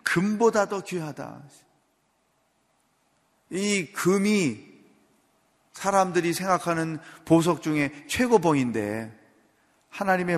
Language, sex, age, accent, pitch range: Korean, male, 40-59, native, 140-215 Hz